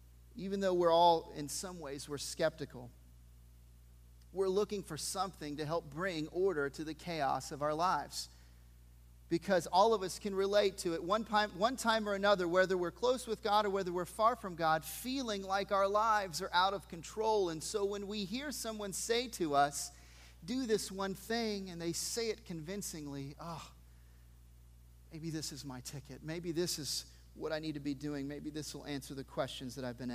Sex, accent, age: male, American, 40-59